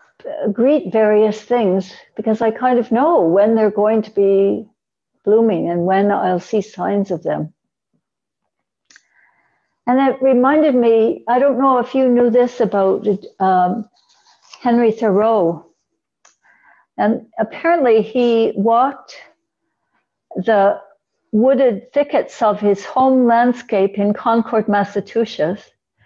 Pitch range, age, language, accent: 205-260 Hz, 60-79, English, American